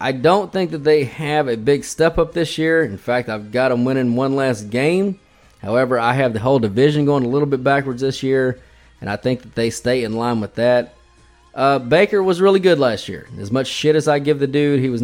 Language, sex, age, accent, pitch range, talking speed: English, male, 20-39, American, 115-140 Hz, 245 wpm